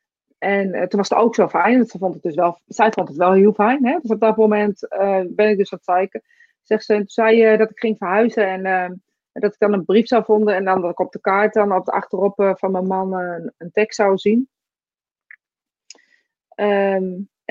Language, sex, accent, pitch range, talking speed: Dutch, female, Dutch, 190-230 Hz, 245 wpm